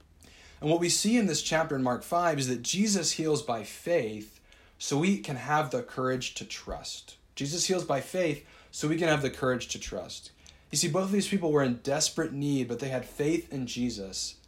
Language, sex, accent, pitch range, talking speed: English, male, American, 120-170 Hz, 215 wpm